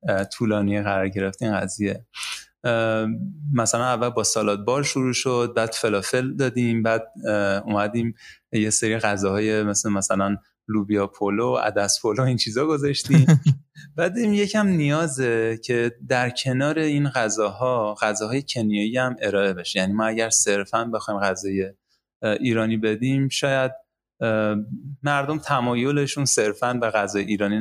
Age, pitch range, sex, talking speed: 30-49, 110-135 Hz, male, 125 wpm